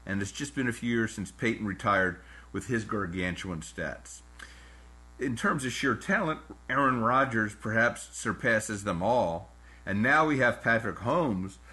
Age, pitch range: 50-69, 90-125 Hz